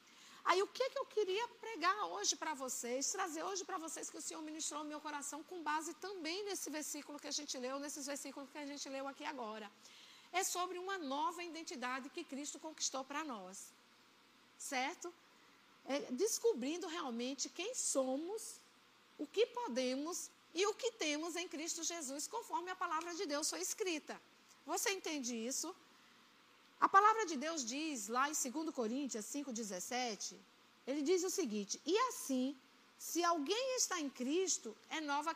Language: Portuguese